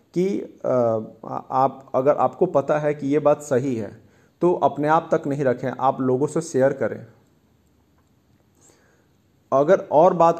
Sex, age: male, 40-59